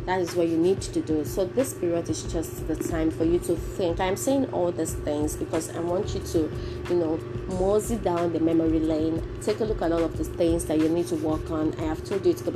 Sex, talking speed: female, 265 wpm